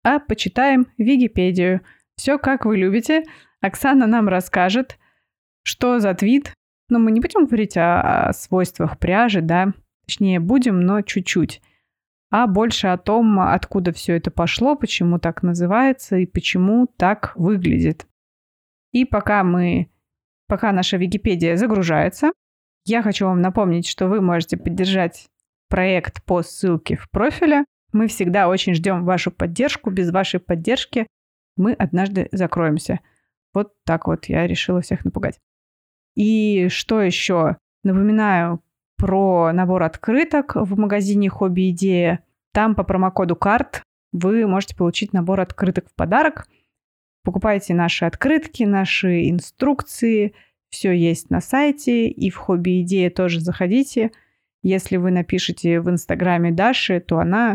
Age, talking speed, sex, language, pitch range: 20-39, 130 wpm, female, Russian, 180-225 Hz